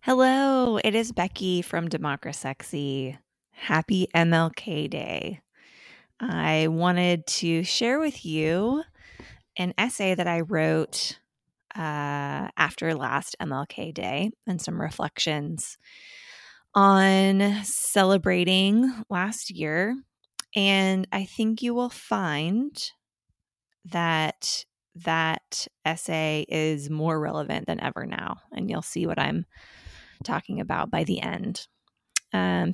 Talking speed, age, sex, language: 105 wpm, 20-39, female, English